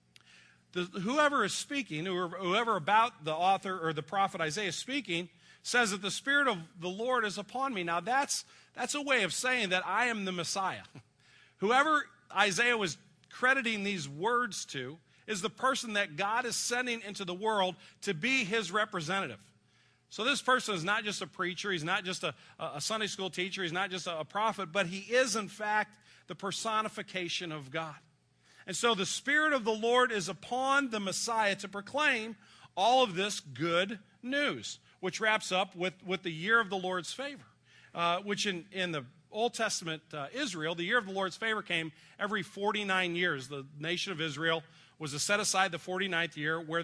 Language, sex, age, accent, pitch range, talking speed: English, male, 40-59, American, 170-220 Hz, 190 wpm